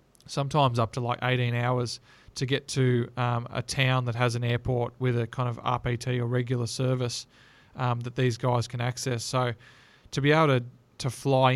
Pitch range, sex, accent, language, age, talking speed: 120-130 Hz, male, Australian, English, 20-39, 190 wpm